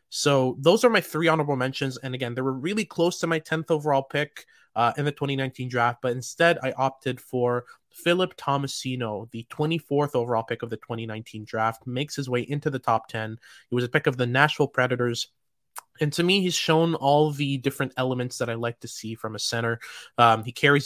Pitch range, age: 120-140 Hz, 20-39